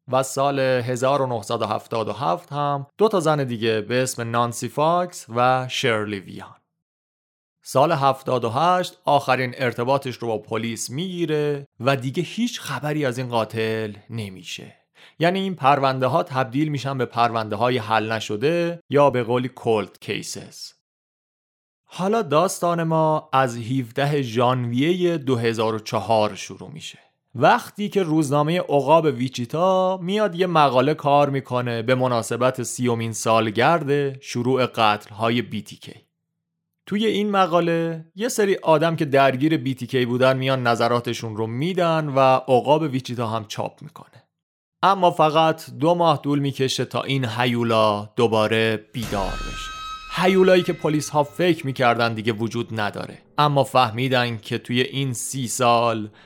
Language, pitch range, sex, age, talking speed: Persian, 115-160 Hz, male, 30-49, 130 wpm